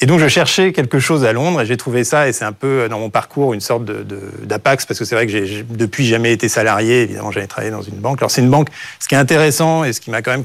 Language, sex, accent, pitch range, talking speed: French, male, French, 110-145 Hz, 315 wpm